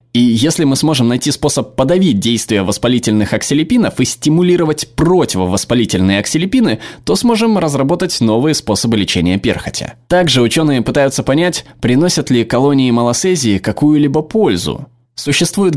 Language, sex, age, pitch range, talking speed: Russian, male, 20-39, 105-150 Hz, 120 wpm